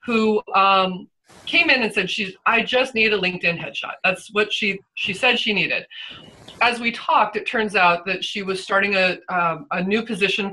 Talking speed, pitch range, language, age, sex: 200 wpm, 175-215 Hz, English, 30-49, female